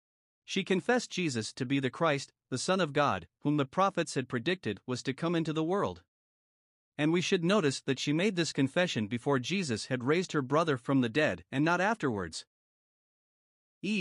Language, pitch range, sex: English, 130-175 Hz, male